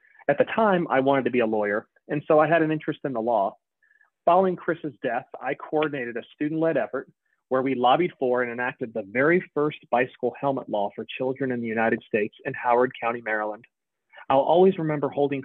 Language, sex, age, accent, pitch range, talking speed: English, male, 30-49, American, 120-155 Hz, 200 wpm